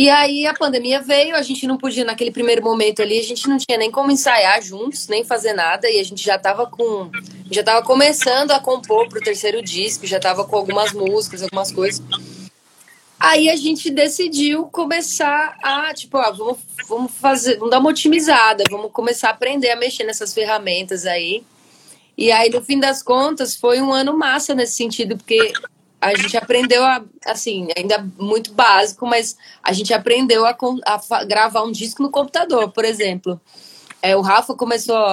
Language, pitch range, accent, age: Portuguese, 210-270 Hz, Brazilian, 20-39